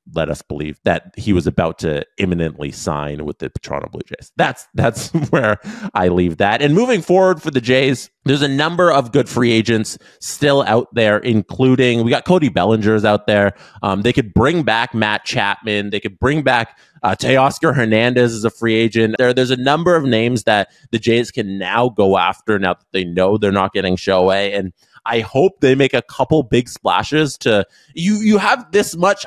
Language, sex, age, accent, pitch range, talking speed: English, male, 20-39, American, 100-145 Hz, 205 wpm